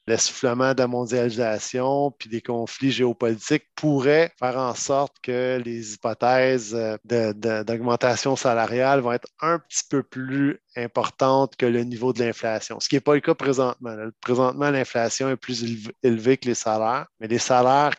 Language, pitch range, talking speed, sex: English, 115-140 Hz, 160 wpm, male